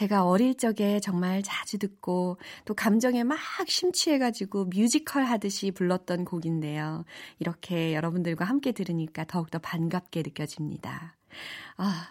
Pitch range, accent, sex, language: 170-255 Hz, native, female, Korean